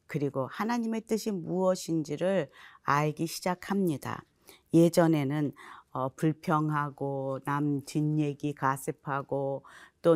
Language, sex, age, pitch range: Korean, female, 40-59, 145-190 Hz